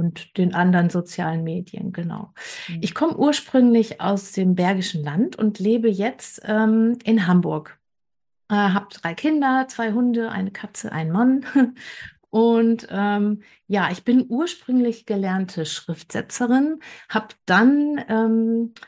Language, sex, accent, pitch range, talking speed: German, female, German, 185-225 Hz, 125 wpm